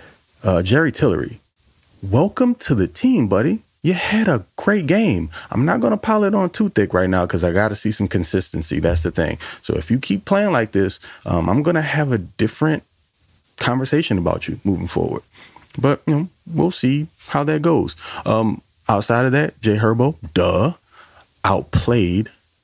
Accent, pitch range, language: American, 90-130 Hz, English